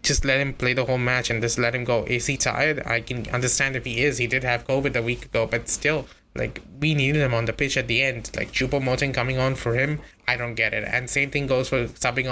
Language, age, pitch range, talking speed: English, 20-39, 120-135 Hz, 275 wpm